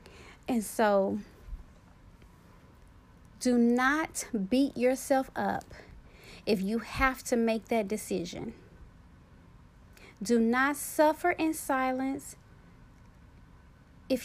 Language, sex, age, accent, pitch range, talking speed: English, female, 30-49, American, 215-270 Hz, 85 wpm